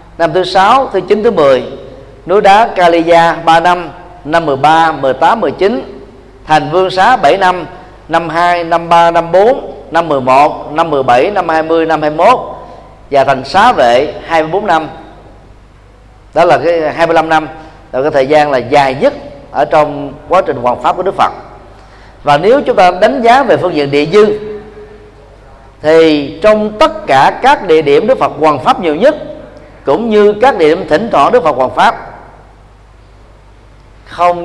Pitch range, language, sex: 125-180 Hz, Vietnamese, male